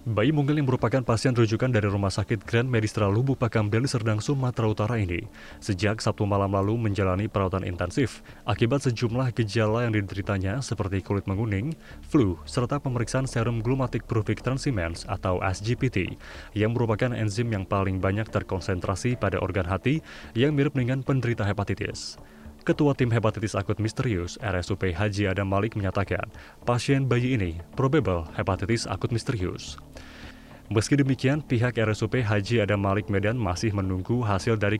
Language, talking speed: Indonesian, 150 wpm